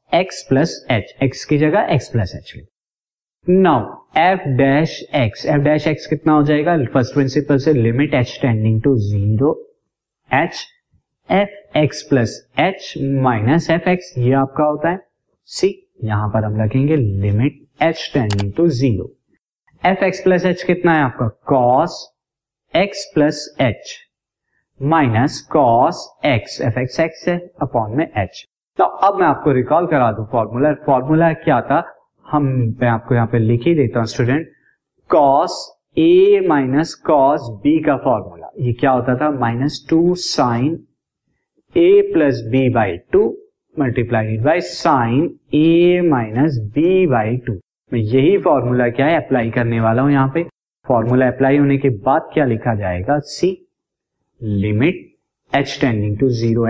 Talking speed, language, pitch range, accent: 115 wpm, Hindi, 120-165 Hz, native